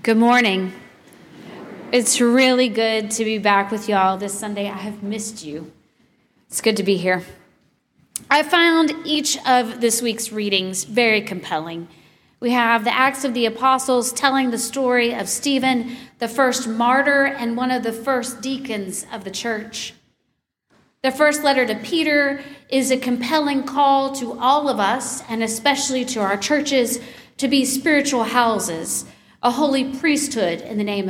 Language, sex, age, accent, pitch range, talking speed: English, female, 40-59, American, 205-255 Hz, 160 wpm